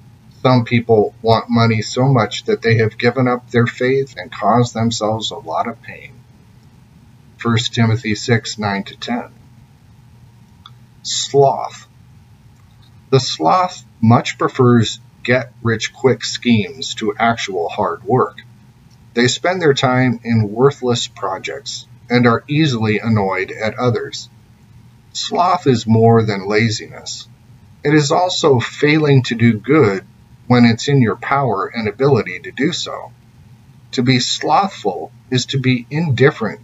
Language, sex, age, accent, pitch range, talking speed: English, male, 40-59, American, 115-130 Hz, 125 wpm